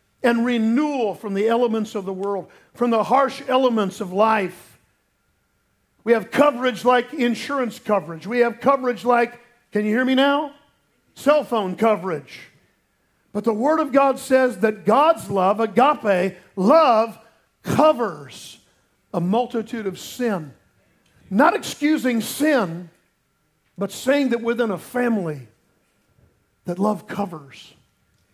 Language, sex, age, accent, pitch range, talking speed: English, male, 50-69, American, 195-255 Hz, 125 wpm